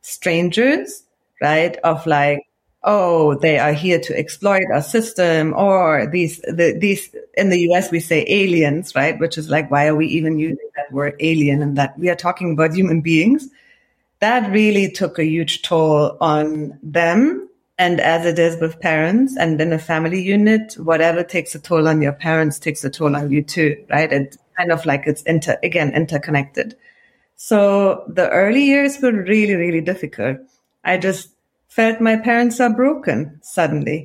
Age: 30-49